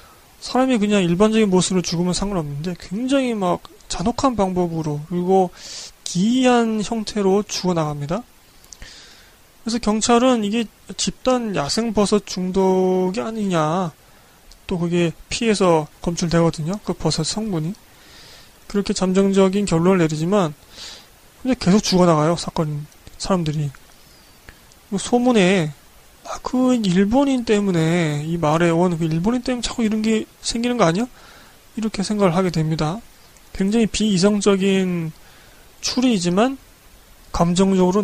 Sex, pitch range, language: male, 170-220 Hz, Korean